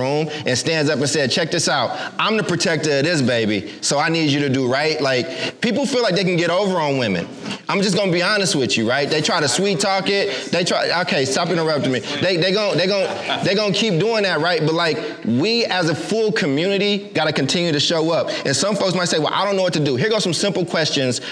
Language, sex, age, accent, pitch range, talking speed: English, male, 30-49, American, 155-205 Hz, 260 wpm